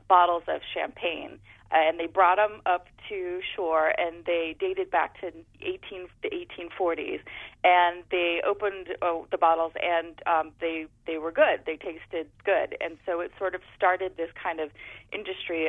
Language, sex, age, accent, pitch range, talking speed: English, female, 30-49, American, 165-195 Hz, 155 wpm